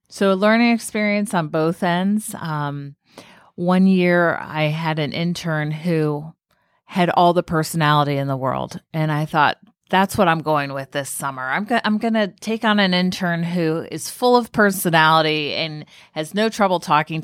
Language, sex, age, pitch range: English, female, 30-49, 145-195 Hz